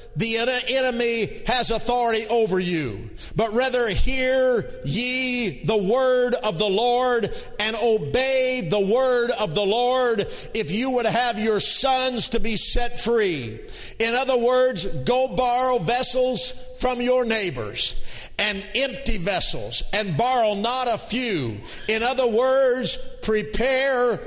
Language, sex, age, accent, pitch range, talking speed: English, male, 50-69, American, 225-255 Hz, 130 wpm